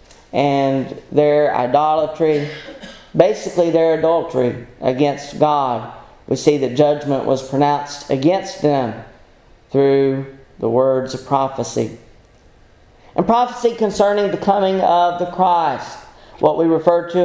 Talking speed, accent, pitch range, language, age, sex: 115 wpm, American, 130-180 Hz, English, 40-59, male